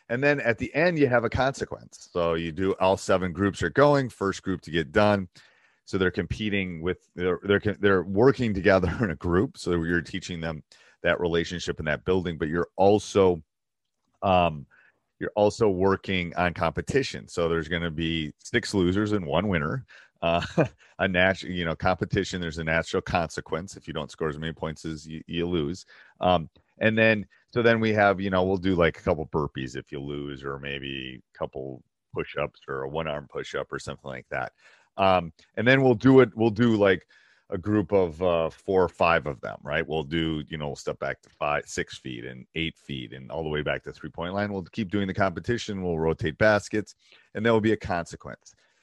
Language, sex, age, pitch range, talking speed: English, male, 30-49, 80-105 Hz, 215 wpm